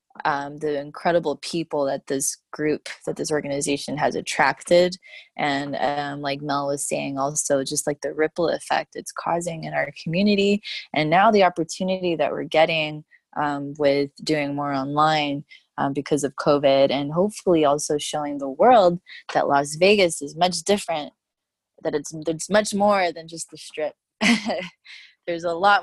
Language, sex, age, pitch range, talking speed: English, female, 20-39, 150-175 Hz, 160 wpm